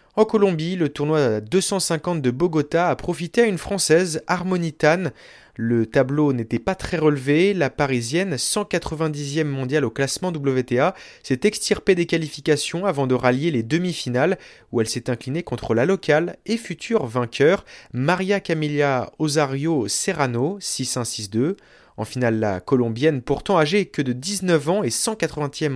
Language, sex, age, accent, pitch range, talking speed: French, male, 30-49, French, 130-180 Hz, 145 wpm